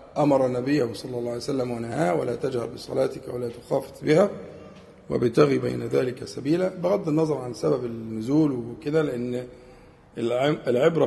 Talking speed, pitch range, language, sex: 135 wpm, 130-175 Hz, Arabic, male